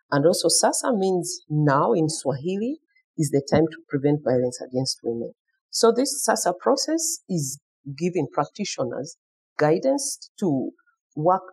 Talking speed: 130 wpm